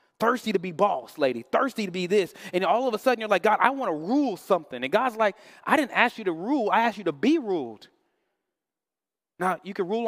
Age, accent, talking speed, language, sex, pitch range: 30-49, American, 245 wpm, English, male, 140-210 Hz